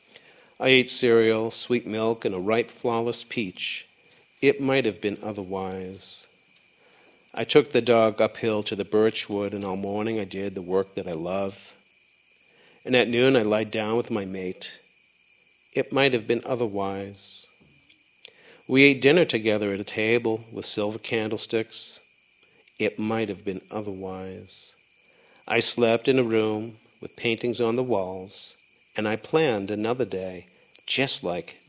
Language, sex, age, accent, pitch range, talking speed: English, male, 50-69, American, 100-120 Hz, 150 wpm